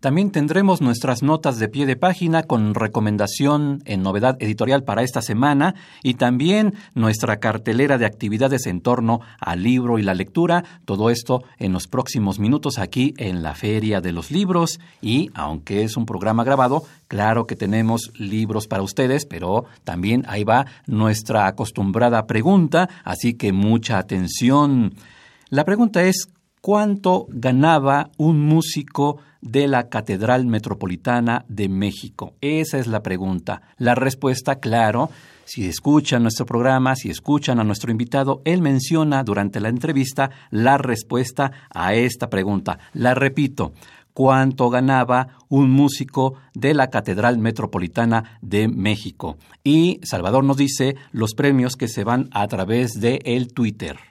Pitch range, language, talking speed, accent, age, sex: 110-140 Hz, Spanish, 145 wpm, Mexican, 50-69, male